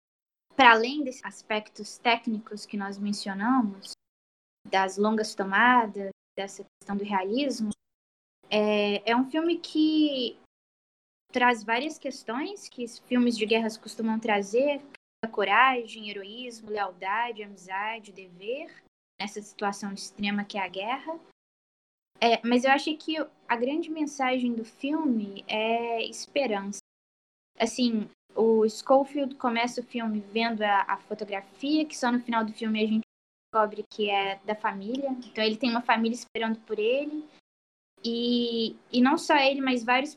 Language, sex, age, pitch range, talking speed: Portuguese, female, 10-29, 215-255 Hz, 135 wpm